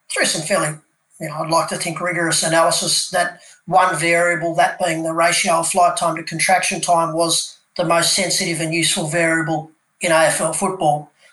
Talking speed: 180 wpm